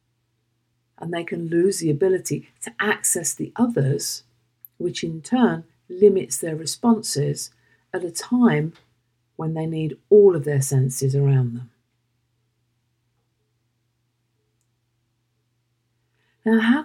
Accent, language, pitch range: British, English, 120-145 Hz